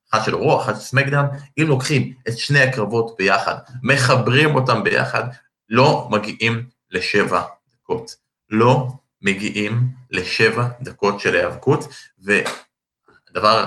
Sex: male